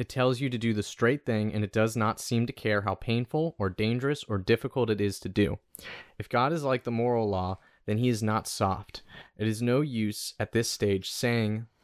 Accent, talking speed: American, 230 wpm